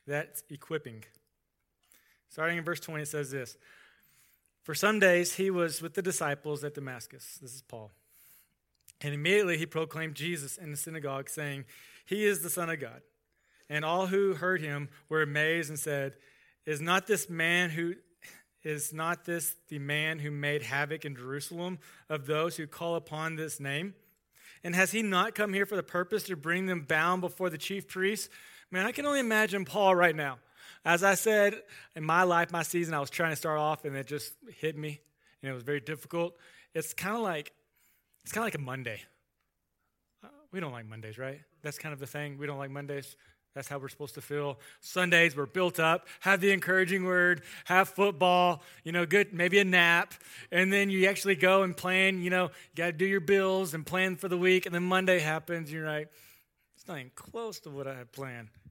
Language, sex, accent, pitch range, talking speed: English, male, American, 145-185 Hz, 200 wpm